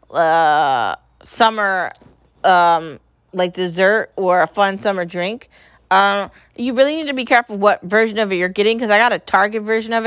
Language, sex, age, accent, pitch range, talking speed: English, female, 20-39, American, 185-235 Hz, 185 wpm